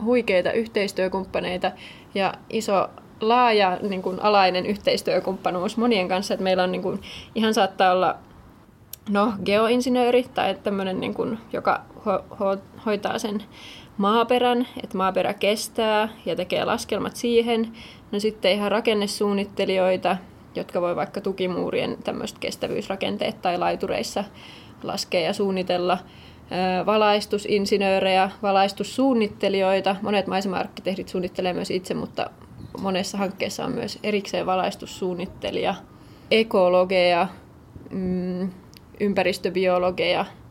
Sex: female